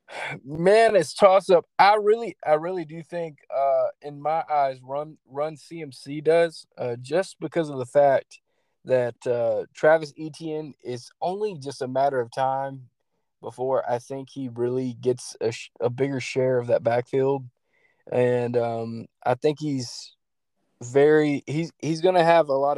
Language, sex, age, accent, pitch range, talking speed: English, male, 20-39, American, 125-160 Hz, 160 wpm